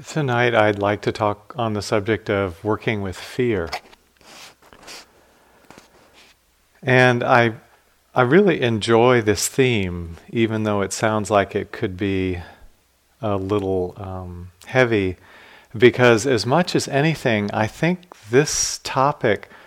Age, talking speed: 40-59, 120 wpm